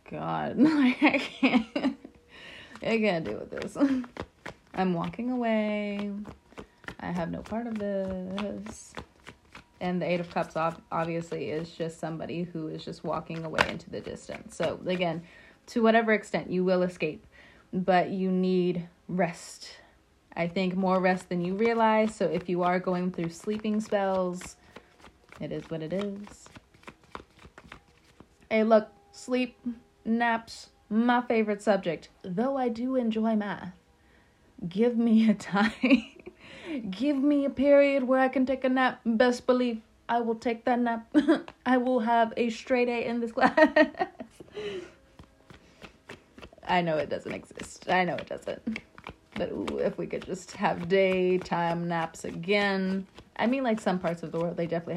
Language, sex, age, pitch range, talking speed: English, female, 20-39, 180-245 Hz, 150 wpm